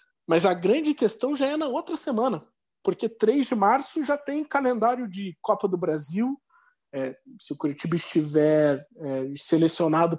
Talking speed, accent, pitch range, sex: 145 wpm, Brazilian, 165-255 Hz, male